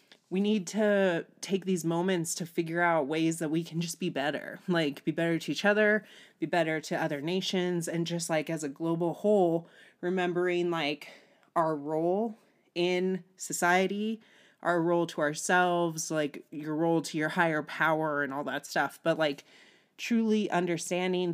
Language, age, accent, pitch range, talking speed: English, 30-49, American, 155-180 Hz, 165 wpm